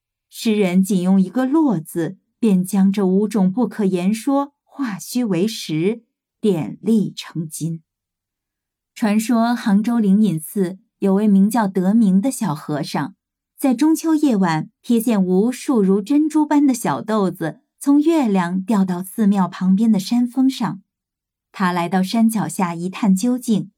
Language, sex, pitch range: Chinese, female, 185-235 Hz